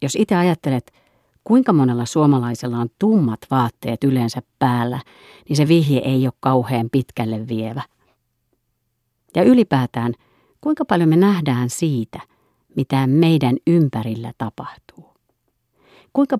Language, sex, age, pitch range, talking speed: Finnish, female, 50-69, 120-165 Hz, 115 wpm